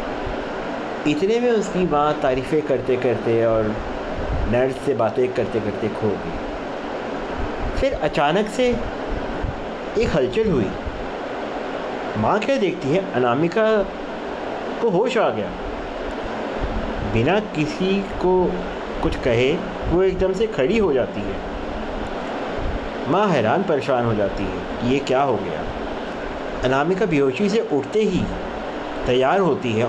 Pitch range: 125-195 Hz